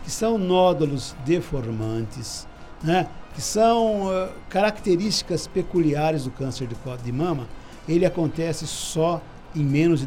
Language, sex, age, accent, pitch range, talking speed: Portuguese, male, 60-79, Brazilian, 130-185 Hz, 115 wpm